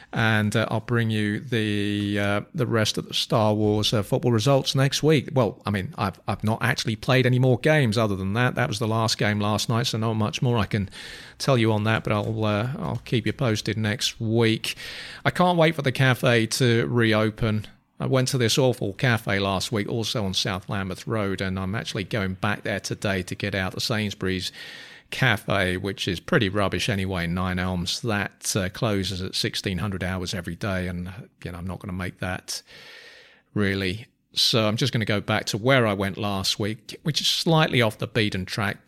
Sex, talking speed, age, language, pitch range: male, 215 wpm, 40-59, English, 95-120 Hz